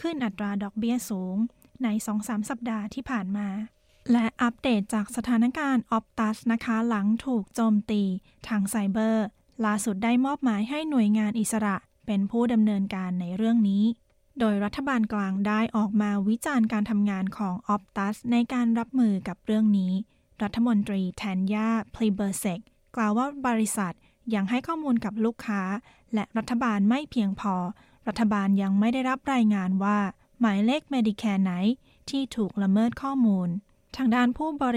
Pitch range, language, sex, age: 205-235 Hz, Thai, female, 20-39